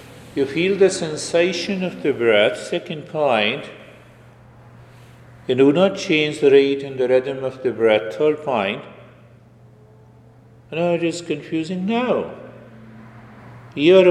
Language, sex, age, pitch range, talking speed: English, male, 50-69, 120-145 Hz, 130 wpm